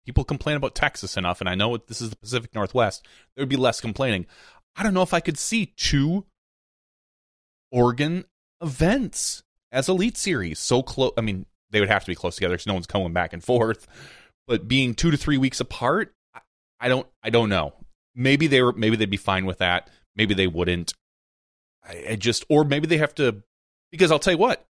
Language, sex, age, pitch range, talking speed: English, male, 30-49, 95-135 Hz, 210 wpm